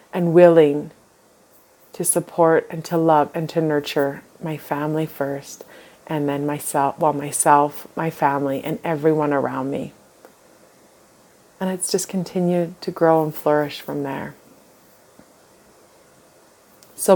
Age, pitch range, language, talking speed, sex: 30-49, 150-170 Hz, English, 120 wpm, female